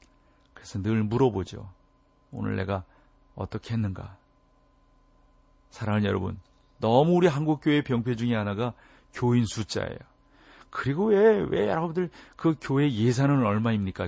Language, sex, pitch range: Korean, male, 105-145 Hz